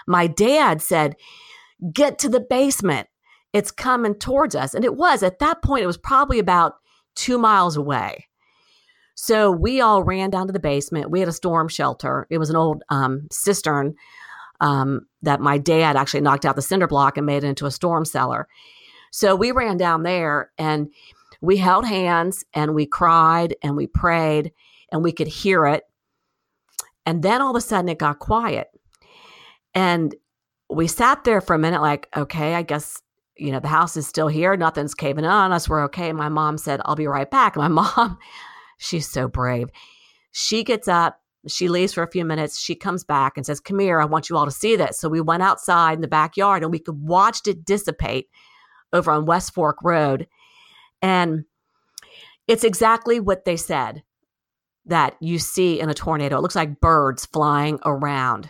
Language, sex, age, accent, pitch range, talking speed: English, female, 50-69, American, 150-195 Hz, 190 wpm